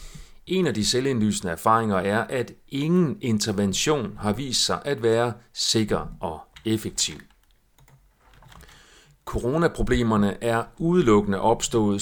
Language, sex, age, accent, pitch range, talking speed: Danish, male, 40-59, native, 105-140 Hz, 105 wpm